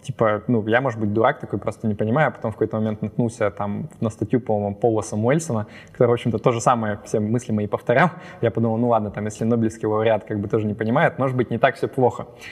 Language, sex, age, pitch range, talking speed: Russian, male, 20-39, 105-125 Hz, 245 wpm